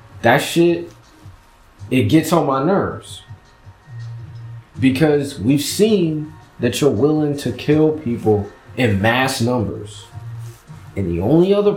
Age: 30-49